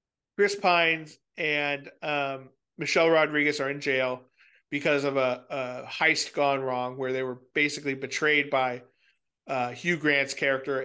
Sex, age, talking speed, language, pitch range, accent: male, 40-59, 145 wpm, English, 130-150 Hz, American